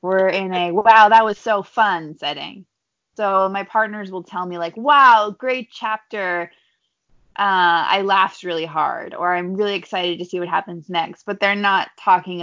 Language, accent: English, American